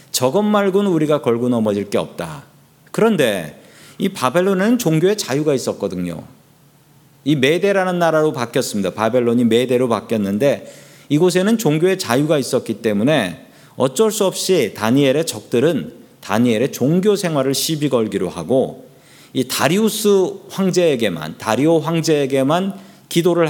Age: 40-59